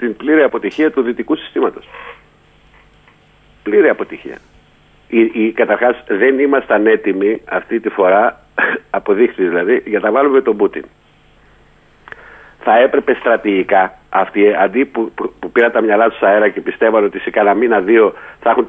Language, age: Greek, 50-69